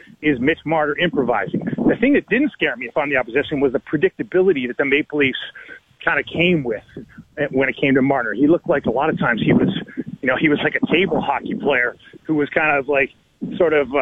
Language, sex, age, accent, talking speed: English, male, 40-59, American, 230 wpm